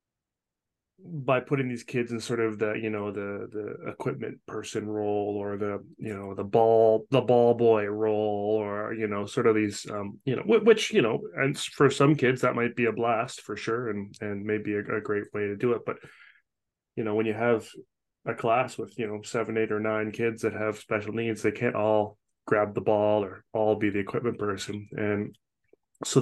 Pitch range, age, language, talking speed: 105-130 Hz, 20-39, English, 210 wpm